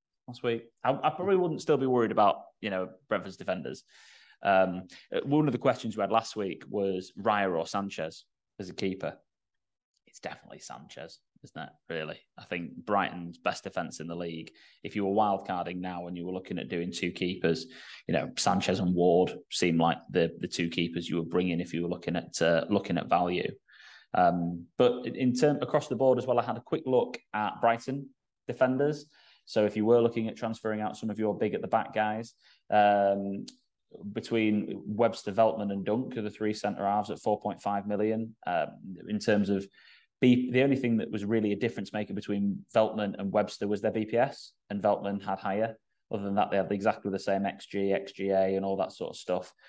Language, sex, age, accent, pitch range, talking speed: English, male, 20-39, British, 95-115 Hz, 205 wpm